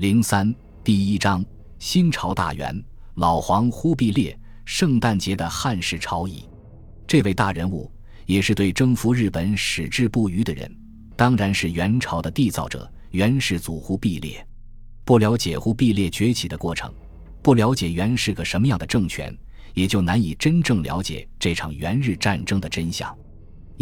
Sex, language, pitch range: male, Chinese, 85-115 Hz